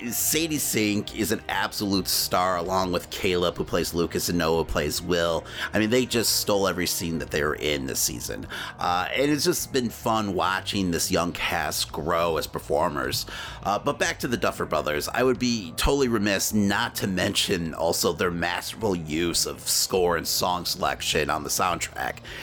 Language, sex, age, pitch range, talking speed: English, male, 30-49, 95-125 Hz, 185 wpm